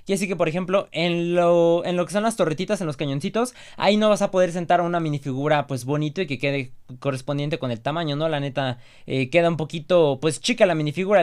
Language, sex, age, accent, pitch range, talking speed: Spanish, male, 20-39, Mexican, 145-185 Hz, 235 wpm